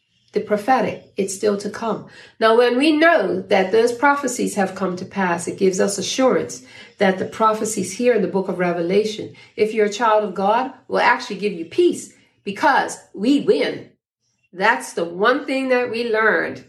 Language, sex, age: English, female, 50-69